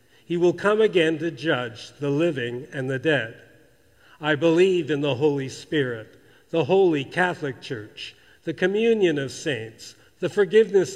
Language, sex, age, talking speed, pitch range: English, male, 50-69, 150 wpm, 145-185 Hz